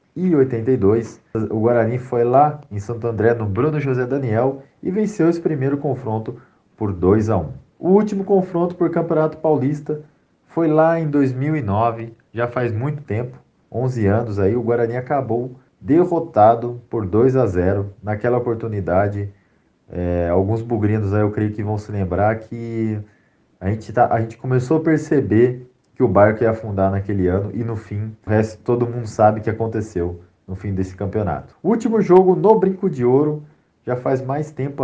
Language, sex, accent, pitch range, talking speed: Portuguese, male, Brazilian, 105-140 Hz, 170 wpm